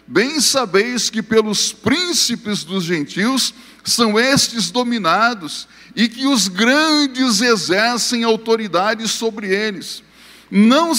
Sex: male